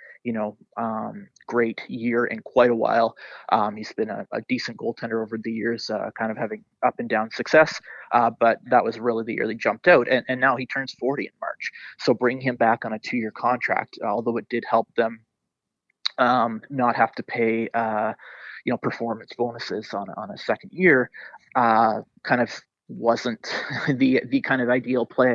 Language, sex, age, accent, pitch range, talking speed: English, male, 20-39, American, 115-125 Hz, 195 wpm